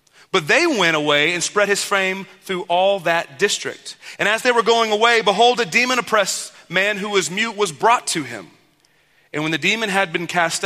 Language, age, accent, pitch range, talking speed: English, 30-49, American, 150-210 Hz, 210 wpm